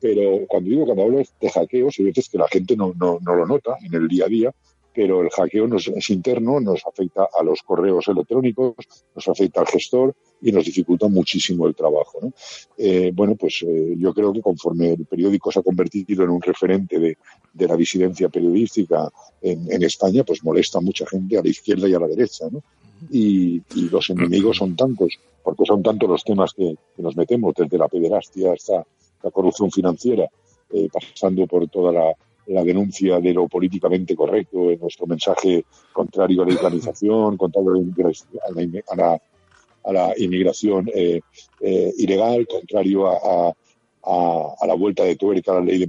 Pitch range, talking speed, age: 90-100 Hz, 190 wpm, 50-69